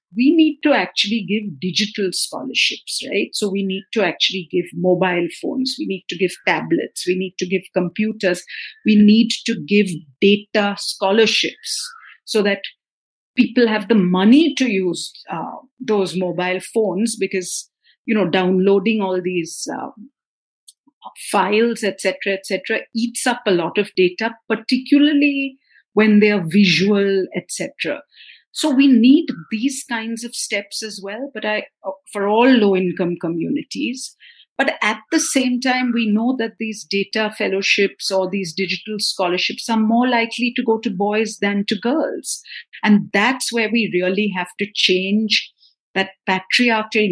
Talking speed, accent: 150 wpm, Indian